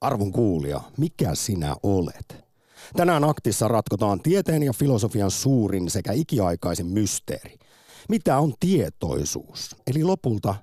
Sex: male